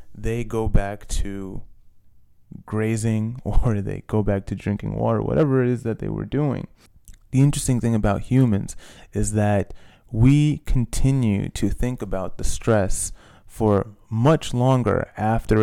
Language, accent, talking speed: English, American, 140 wpm